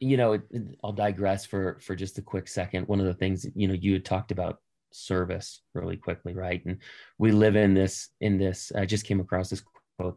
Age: 30-49